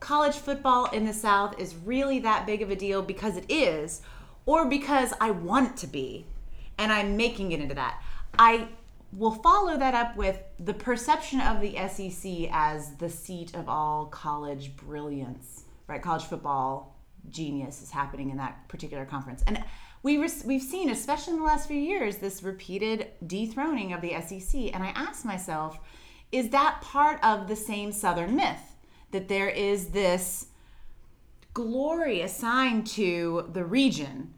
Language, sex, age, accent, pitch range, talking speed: English, female, 30-49, American, 170-265 Hz, 160 wpm